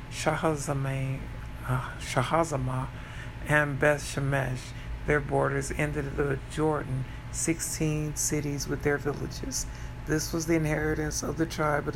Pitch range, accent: 125-150 Hz, American